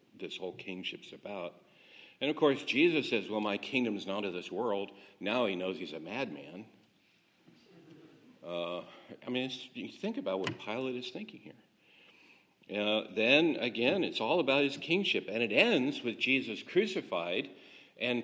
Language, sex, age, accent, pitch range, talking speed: English, male, 50-69, American, 110-160 Hz, 160 wpm